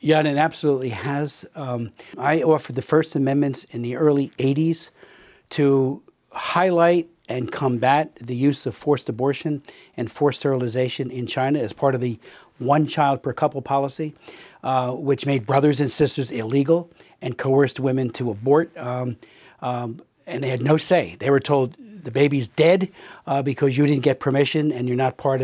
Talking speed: 165 wpm